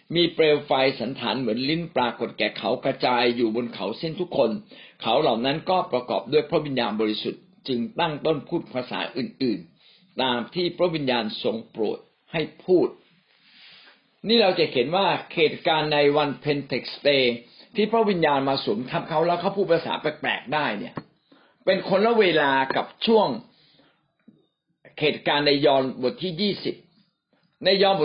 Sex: male